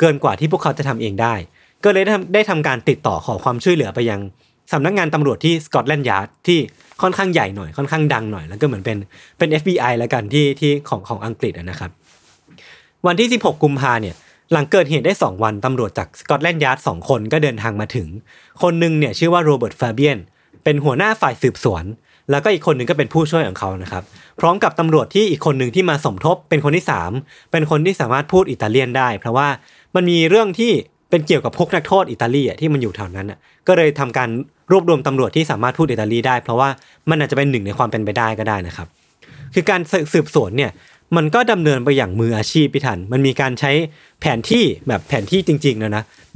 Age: 20-39